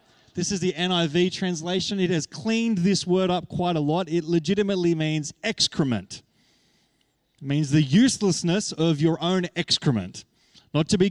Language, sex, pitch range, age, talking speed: English, male, 150-195 Hz, 30-49, 155 wpm